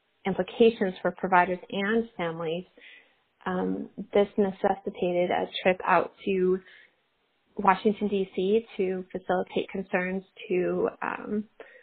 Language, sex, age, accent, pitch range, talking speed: English, female, 30-49, American, 180-200 Hz, 95 wpm